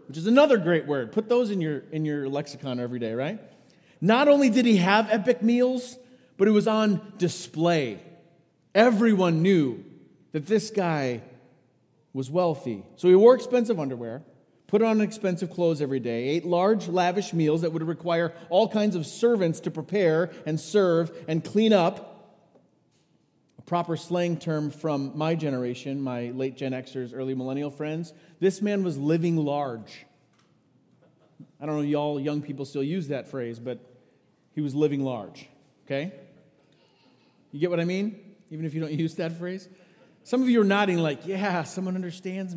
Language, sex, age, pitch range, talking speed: English, male, 30-49, 145-200 Hz, 170 wpm